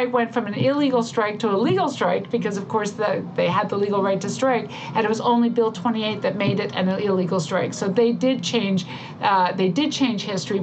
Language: English